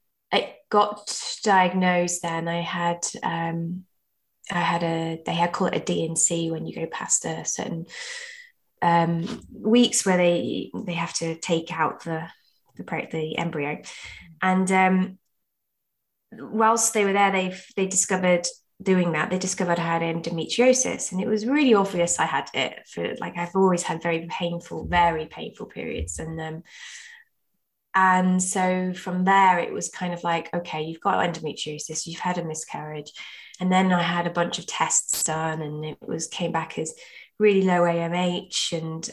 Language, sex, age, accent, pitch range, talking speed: English, female, 20-39, British, 165-190 Hz, 165 wpm